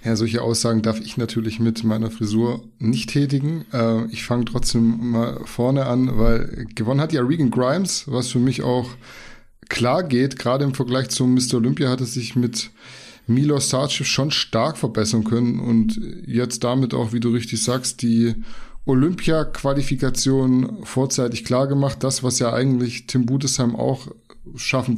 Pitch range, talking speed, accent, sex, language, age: 115-135 Hz, 160 wpm, German, male, German, 20-39